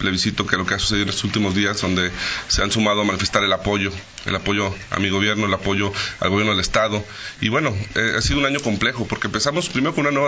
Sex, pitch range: male, 100-120 Hz